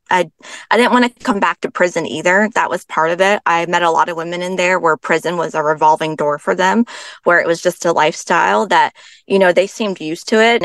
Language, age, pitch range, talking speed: English, 20-39, 165-225 Hz, 255 wpm